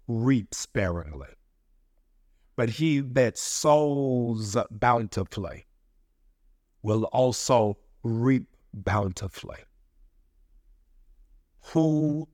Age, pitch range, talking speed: 50-69, 90-120 Hz, 60 wpm